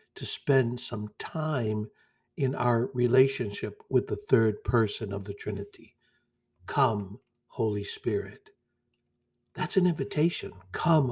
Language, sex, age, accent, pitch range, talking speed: English, male, 60-79, American, 120-145 Hz, 115 wpm